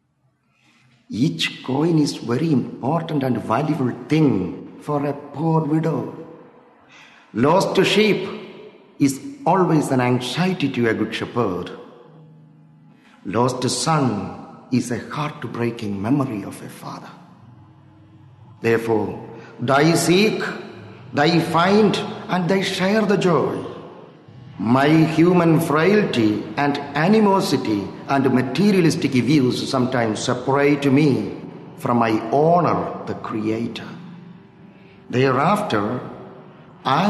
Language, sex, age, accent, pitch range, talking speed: English, male, 50-69, Indian, 125-175 Hz, 95 wpm